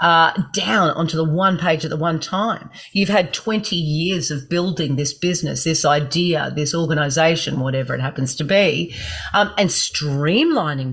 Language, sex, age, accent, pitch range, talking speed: English, female, 40-59, Australian, 155-205 Hz, 165 wpm